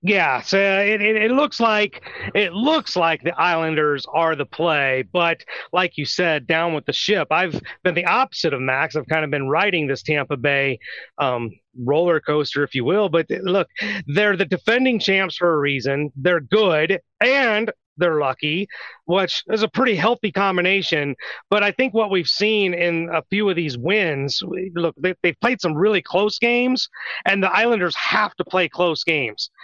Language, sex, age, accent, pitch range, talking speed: English, male, 30-49, American, 150-185 Hz, 180 wpm